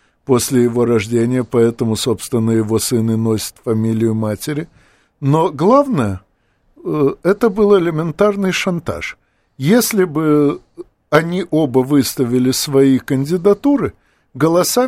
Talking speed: 95 wpm